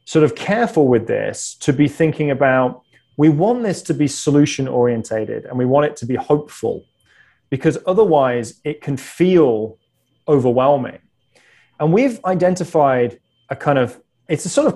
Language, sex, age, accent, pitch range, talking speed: English, male, 30-49, British, 125-170 Hz, 160 wpm